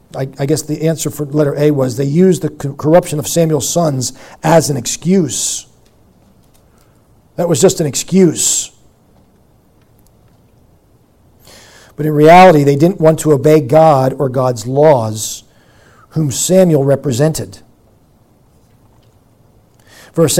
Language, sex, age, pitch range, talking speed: English, male, 40-59, 145-195 Hz, 120 wpm